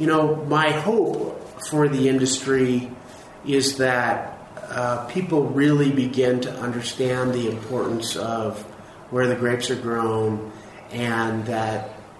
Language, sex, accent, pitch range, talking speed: English, male, American, 115-140 Hz, 125 wpm